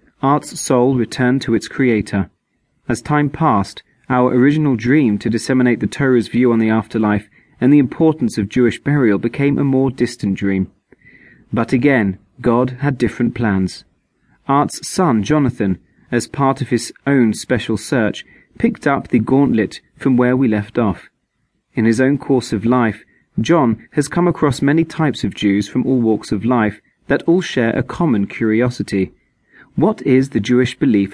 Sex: male